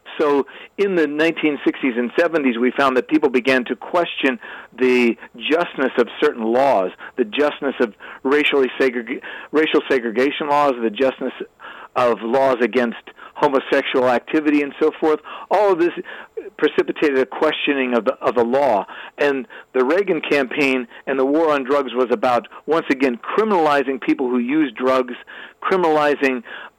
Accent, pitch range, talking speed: American, 125-150 Hz, 150 wpm